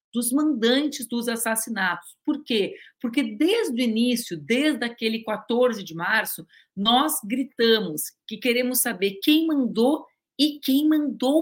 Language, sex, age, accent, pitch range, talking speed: Portuguese, female, 40-59, Brazilian, 185-245 Hz, 130 wpm